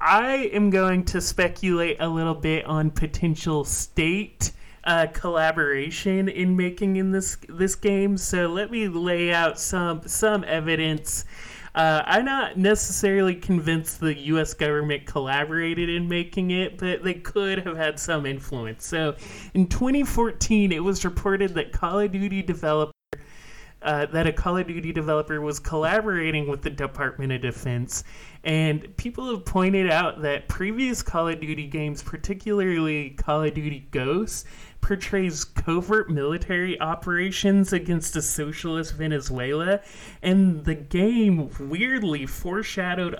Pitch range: 155-195 Hz